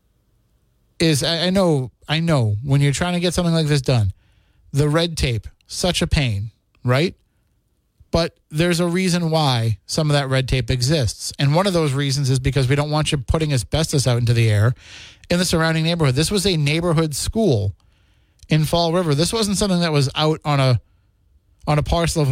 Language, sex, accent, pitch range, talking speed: English, male, American, 120-160 Hz, 195 wpm